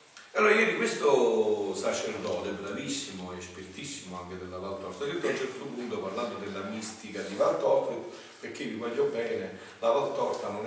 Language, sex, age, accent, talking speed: Italian, male, 40-59, native, 155 wpm